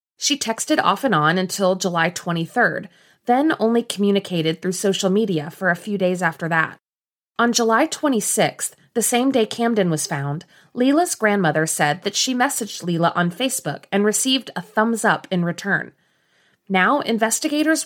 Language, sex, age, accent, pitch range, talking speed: English, female, 30-49, American, 175-240 Hz, 160 wpm